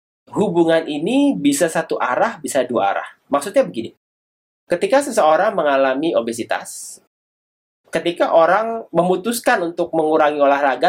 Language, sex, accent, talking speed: Indonesian, male, native, 110 wpm